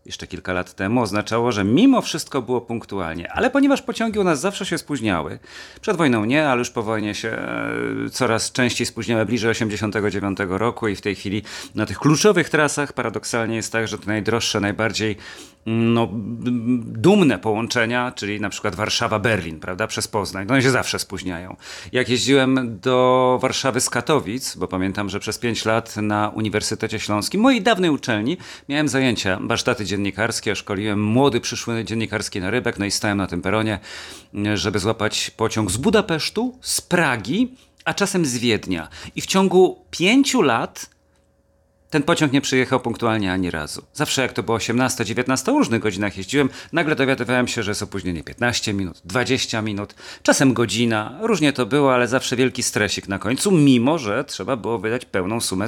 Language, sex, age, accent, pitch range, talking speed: Polish, male, 40-59, native, 105-130 Hz, 170 wpm